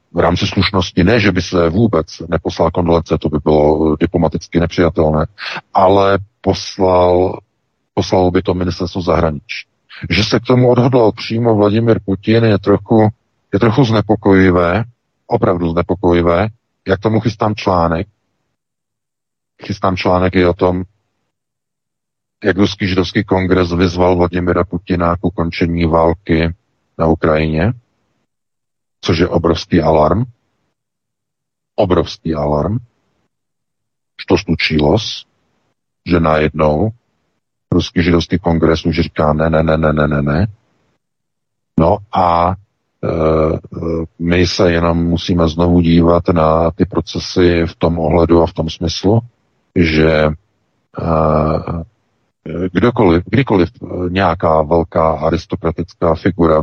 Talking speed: 110 wpm